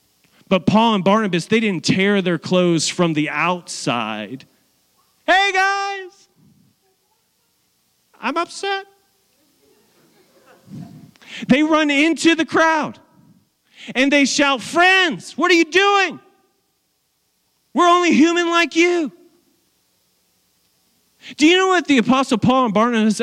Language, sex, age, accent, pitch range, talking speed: English, male, 40-59, American, 180-285 Hz, 110 wpm